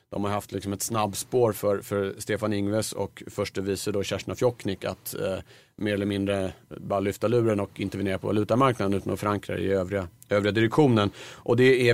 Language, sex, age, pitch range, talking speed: Swedish, male, 40-59, 100-115 Hz, 190 wpm